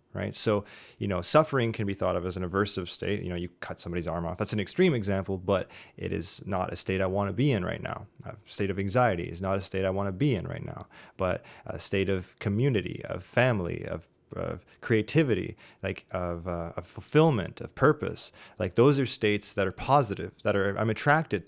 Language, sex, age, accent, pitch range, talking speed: English, male, 20-39, American, 100-140 Hz, 225 wpm